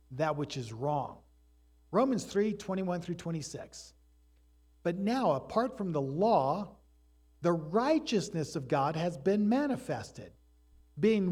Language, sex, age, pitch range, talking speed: English, male, 50-69, 130-210 Hz, 120 wpm